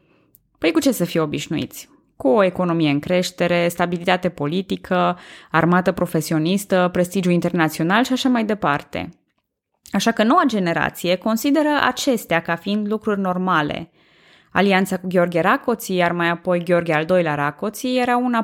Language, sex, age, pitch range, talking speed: Romanian, female, 20-39, 175-240 Hz, 145 wpm